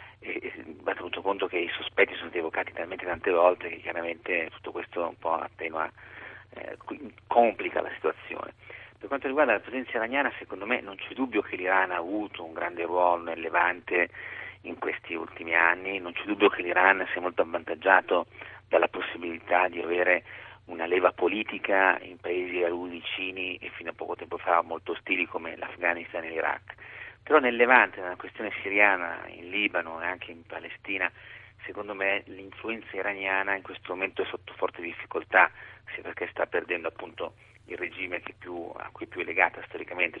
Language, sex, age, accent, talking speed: Italian, male, 40-59, native, 175 wpm